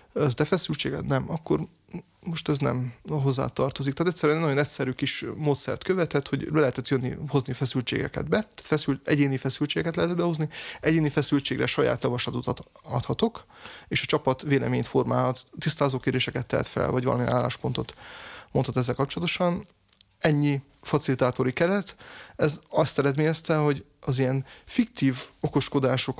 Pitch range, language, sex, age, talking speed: 130-150 Hz, Hungarian, male, 30-49, 135 wpm